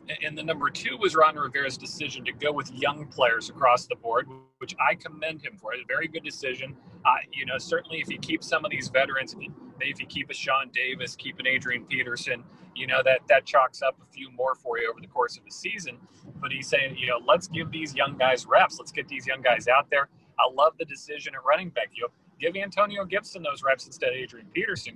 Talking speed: 240 wpm